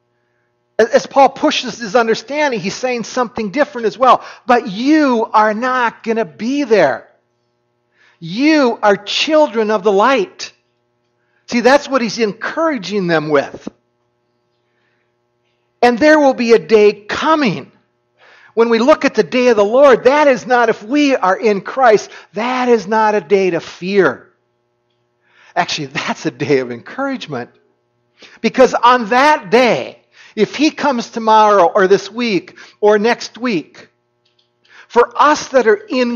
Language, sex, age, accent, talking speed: English, male, 50-69, American, 145 wpm